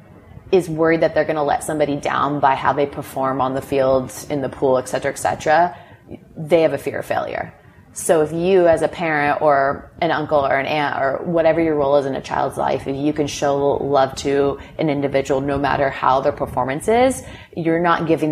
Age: 30-49